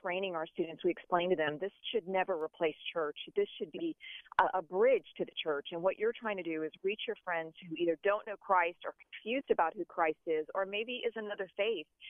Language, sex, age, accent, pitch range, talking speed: English, female, 40-59, American, 160-205 Hz, 235 wpm